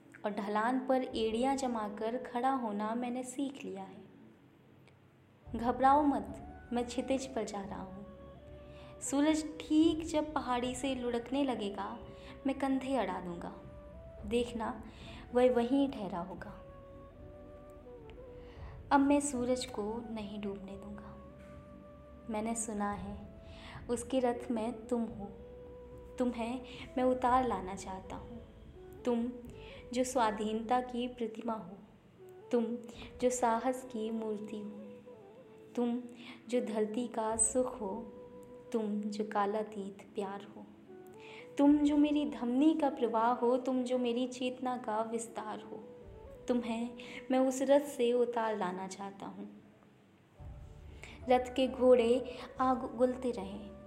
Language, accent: Hindi, native